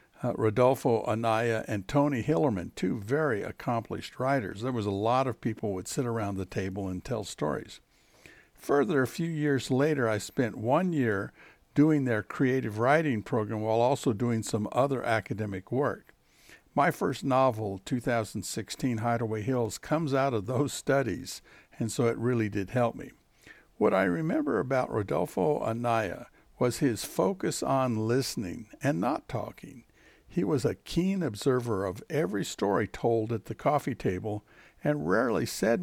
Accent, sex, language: American, male, English